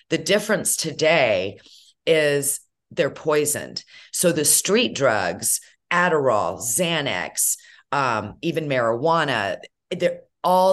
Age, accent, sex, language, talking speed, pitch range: 40-59, American, female, English, 90 wpm, 130-170 Hz